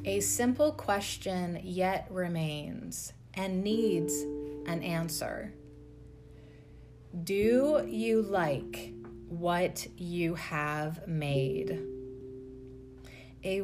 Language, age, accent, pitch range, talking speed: English, 30-49, American, 135-195 Hz, 75 wpm